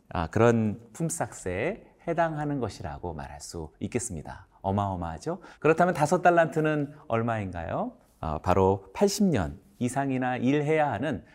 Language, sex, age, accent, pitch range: Korean, male, 30-49, native, 95-140 Hz